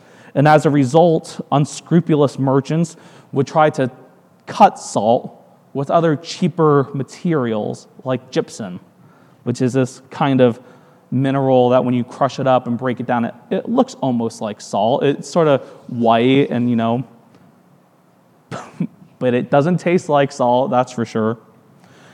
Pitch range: 125-155 Hz